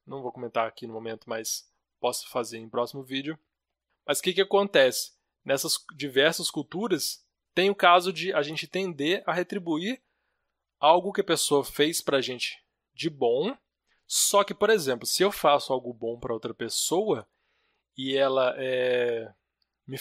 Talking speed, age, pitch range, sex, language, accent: 160 wpm, 20-39, 130-175 Hz, male, Portuguese, Brazilian